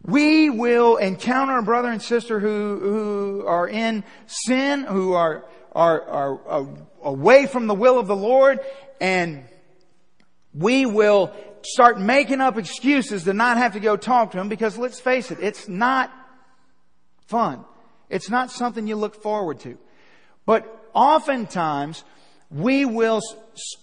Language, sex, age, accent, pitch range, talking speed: English, male, 50-69, American, 215-275 Hz, 145 wpm